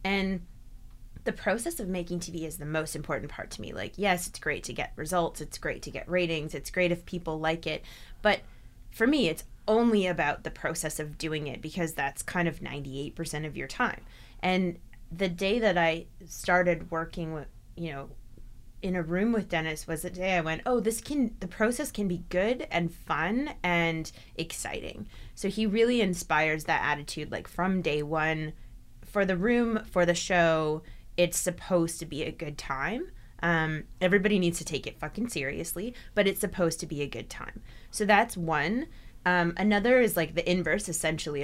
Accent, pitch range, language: American, 150-185 Hz, English